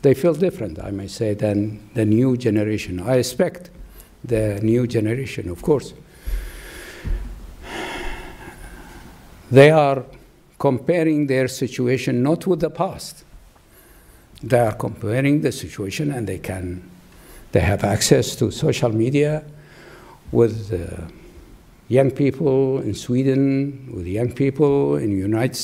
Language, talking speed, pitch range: English, 120 wpm, 105-140 Hz